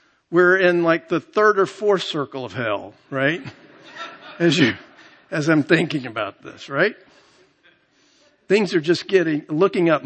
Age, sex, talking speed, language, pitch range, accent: 50-69, male, 150 wpm, English, 130-165 Hz, American